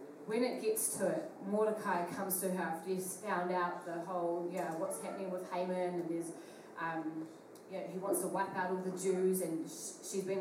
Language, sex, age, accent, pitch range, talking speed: English, female, 30-49, Australian, 180-225 Hz, 225 wpm